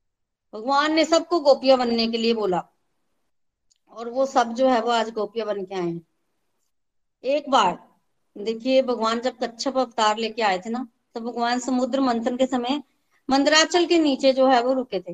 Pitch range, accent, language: 225-270 Hz, native, Hindi